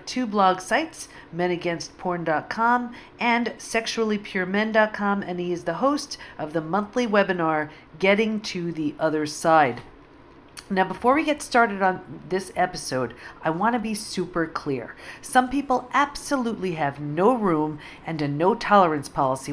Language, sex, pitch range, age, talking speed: English, female, 150-225 Hz, 50-69, 135 wpm